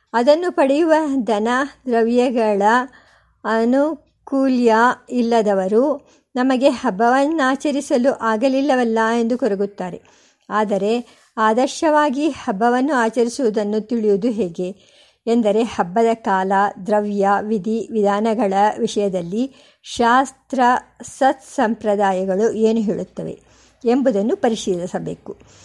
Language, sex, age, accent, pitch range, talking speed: Kannada, male, 50-69, native, 220-280 Hz, 70 wpm